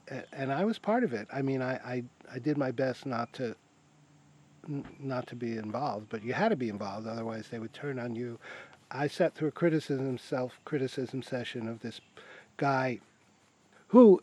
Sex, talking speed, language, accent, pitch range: male, 185 wpm, English, American, 110-145 Hz